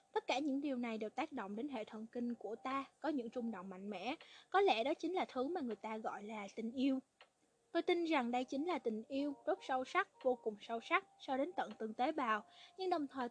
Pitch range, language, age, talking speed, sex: 235-315 Hz, Vietnamese, 20-39, 255 wpm, female